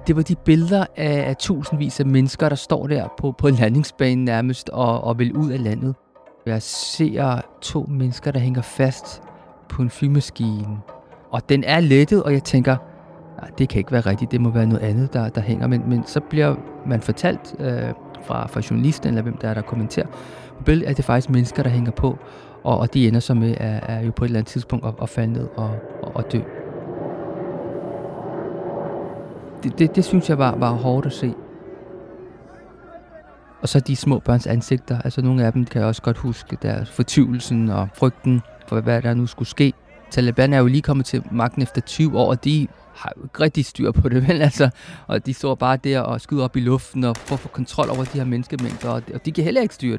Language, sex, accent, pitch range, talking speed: Danish, male, native, 115-140 Hz, 210 wpm